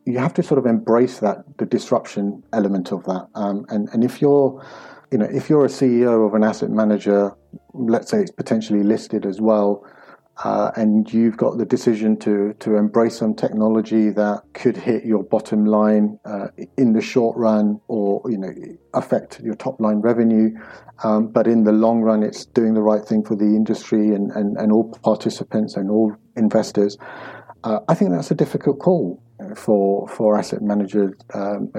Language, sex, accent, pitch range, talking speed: English, male, British, 105-115 Hz, 185 wpm